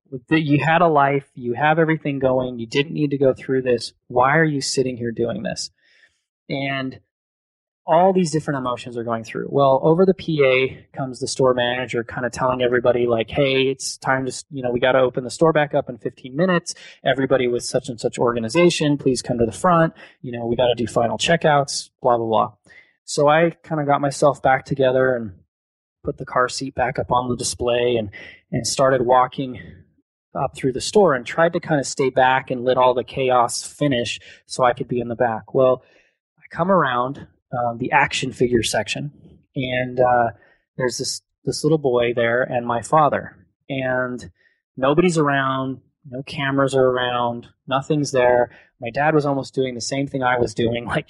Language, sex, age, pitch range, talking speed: English, male, 20-39, 120-140 Hz, 200 wpm